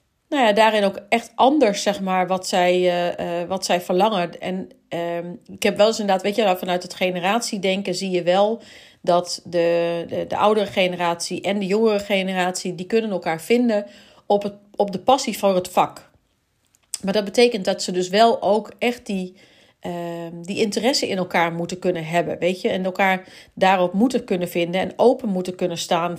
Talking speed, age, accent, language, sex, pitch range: 180 wpm, 40-59, Dutch, Dutch, female, 175-205 Hz